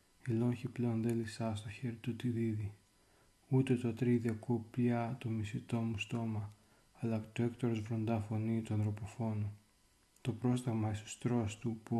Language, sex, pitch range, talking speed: Greek, male, 105-120 Hz, 140 wpm